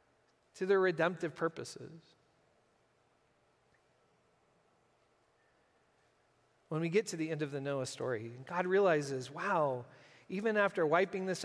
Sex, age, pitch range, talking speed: male, 40-59, 180-235 Hz, 110 wpm